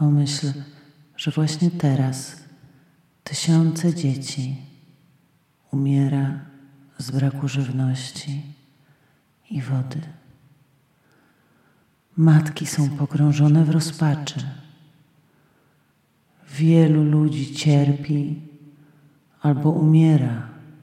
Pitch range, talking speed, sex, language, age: 140-155 Hz, 65 wpm, male, Polish, 40-59